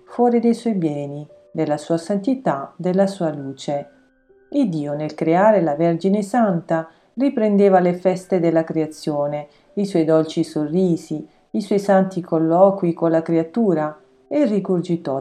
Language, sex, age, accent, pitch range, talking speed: Italian, female, 40-59, native, 155-215 Hz, 140 wpm